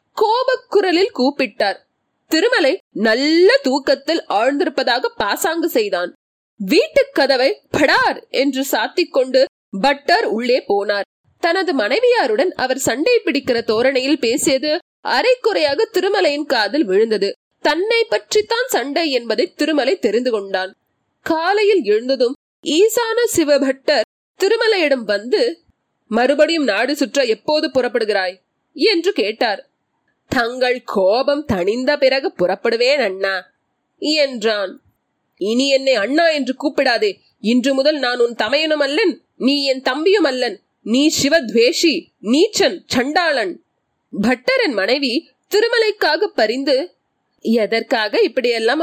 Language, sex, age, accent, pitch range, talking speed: Tamil, female, 30-49, native, 245-350 Hz, 95 wpm